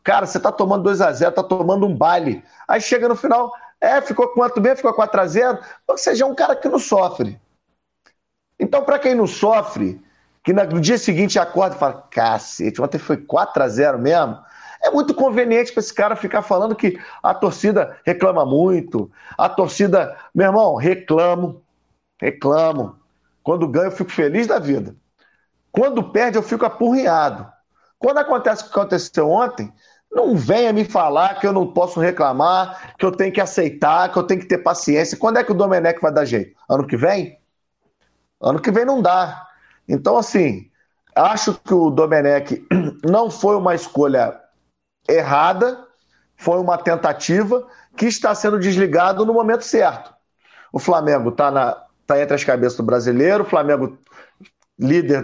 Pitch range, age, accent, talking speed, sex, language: 150-225 Hz, 40-59, Brazilian, 165 wpm, male, Portuguese